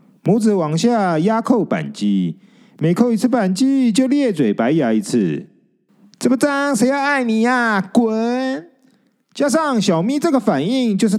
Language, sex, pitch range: Chinese, male, 185-240 Hz